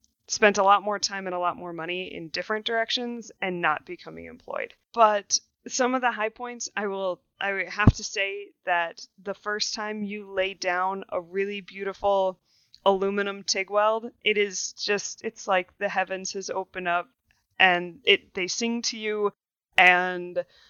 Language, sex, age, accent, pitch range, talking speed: English, female, 20-39, American, 180-215 Hz, 170 wpm